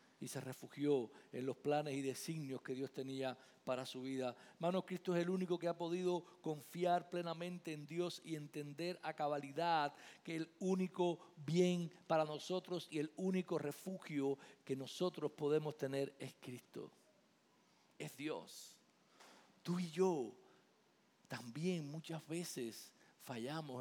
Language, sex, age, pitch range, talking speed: Spanish, male, 50-69, 140-180 Hz, 140 wpm